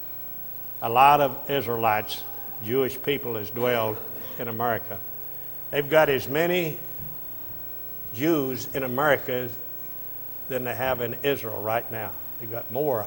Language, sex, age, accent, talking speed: English, male, 60-79, American, 125 wpm